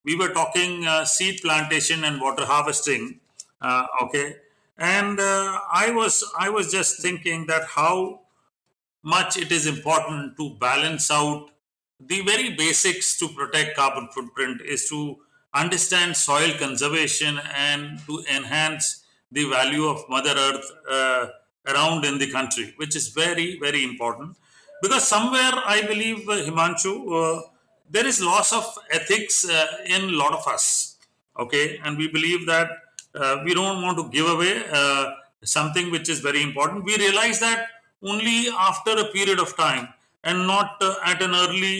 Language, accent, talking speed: Hindi, native, 155 wpm